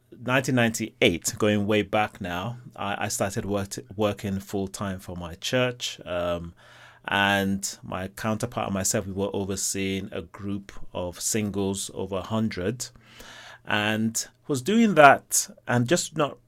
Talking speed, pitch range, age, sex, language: 130 wpm, 95-120 Hz, 30-49, male, English